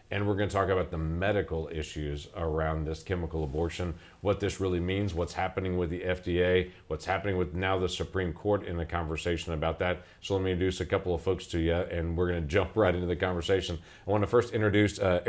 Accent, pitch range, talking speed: American, 85-100 Hz, 230 wpm